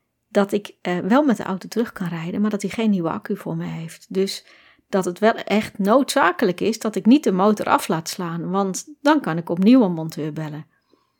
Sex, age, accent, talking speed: female, 40-59, Dutch, 225 wpm